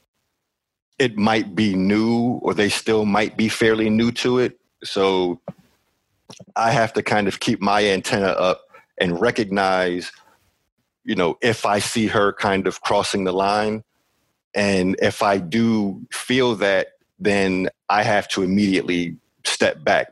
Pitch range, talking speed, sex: 90-110 Hz, 145 wpm, male